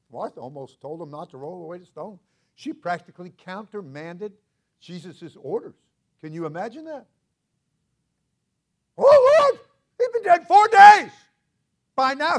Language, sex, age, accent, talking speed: English, male, 60-79, American, 135 wpm